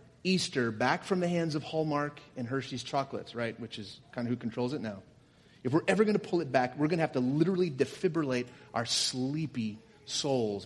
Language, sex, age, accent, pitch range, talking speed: English, male, 30-49, American, 115-155 Hz, 210 wpm